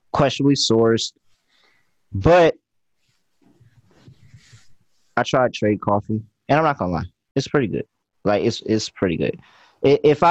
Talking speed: 120 wpm